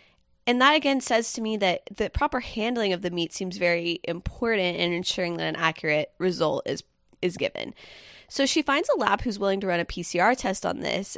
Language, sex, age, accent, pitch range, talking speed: English, female, 20-39, American, 170-225 Hz, 210 wpm